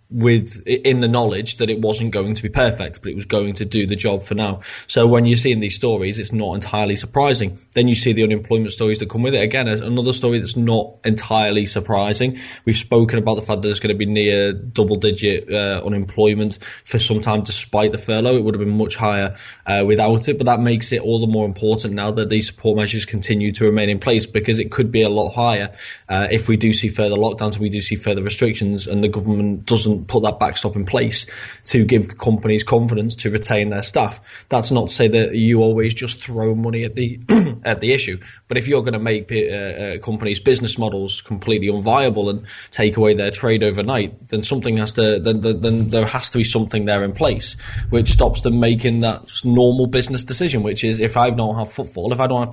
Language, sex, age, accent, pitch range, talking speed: English, male, 20-39, British, 105-120 Hz, 230 wpm